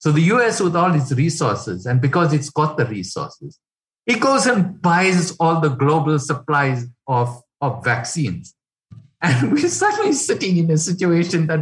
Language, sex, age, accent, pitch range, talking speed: English, male, 60-79, Indian, 125-160 Hz, 165 wpm